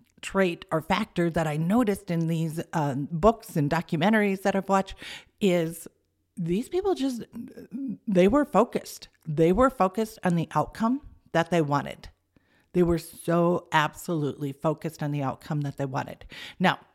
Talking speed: 150 wpm